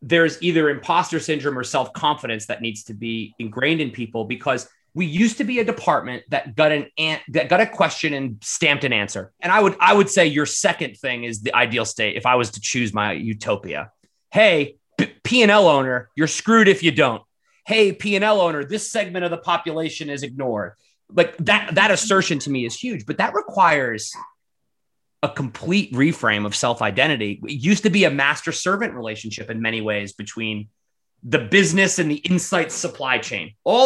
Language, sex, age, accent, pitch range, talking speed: English, male, 30-49, American, 120-185 Hz, 190 wpm